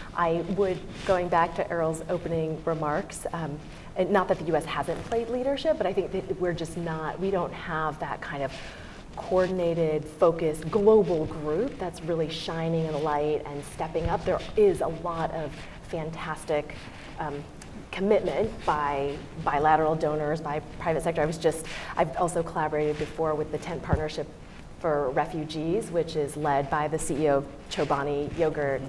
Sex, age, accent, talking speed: female, 30-49, American, 160 wpm